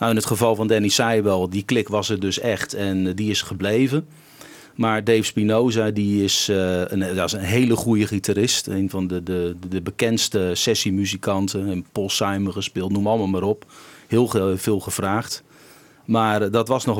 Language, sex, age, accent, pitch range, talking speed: Dutch, male, 40-59, Dutch, 95-115 Hz, 185 wpm